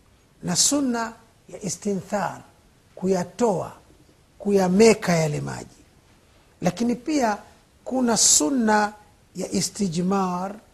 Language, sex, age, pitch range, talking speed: Swahili, male, 50-69, 175-235 Hz, 80 wpm